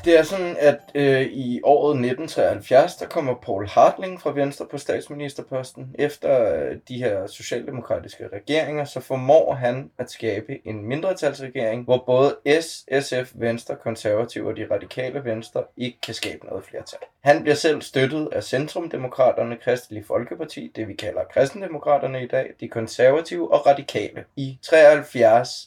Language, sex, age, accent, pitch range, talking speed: Danish, male, 20-39, native, 125-150 Hz, 150 wpm